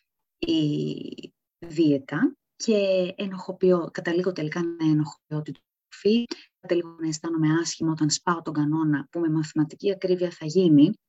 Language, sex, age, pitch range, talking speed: Greek, female, 20-39, 155-225 Hz, 125 wpm